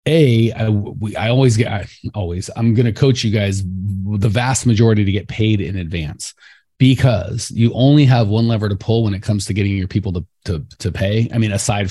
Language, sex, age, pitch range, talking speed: English, male, 30-49, 95-125 Hz, 220 wpm